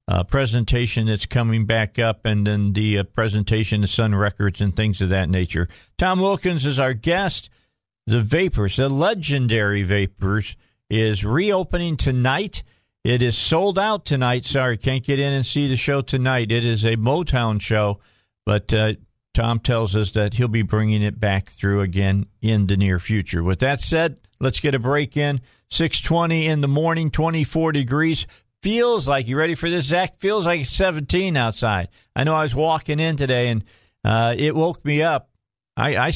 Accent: American